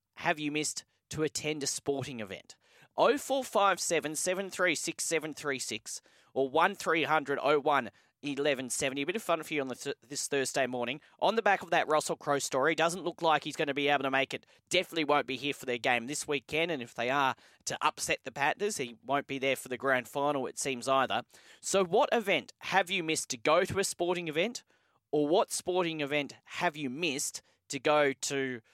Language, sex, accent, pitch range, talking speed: English, male, Australian, 130-165 Hz, 200 wpm